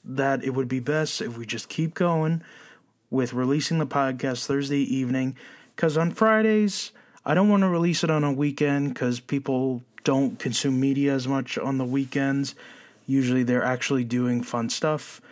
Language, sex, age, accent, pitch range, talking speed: English, male, 20-39, American, 130-155 Hz, 170 wpm